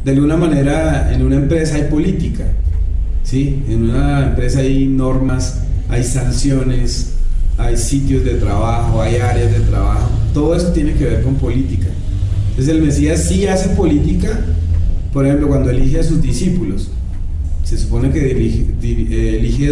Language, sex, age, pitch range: Spanish, male, 30-49, 100-140 Hz